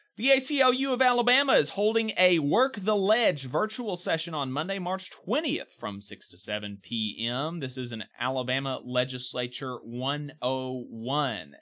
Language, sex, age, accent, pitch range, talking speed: English, male, 30-49, American, 130-195 Hz, 140 wpm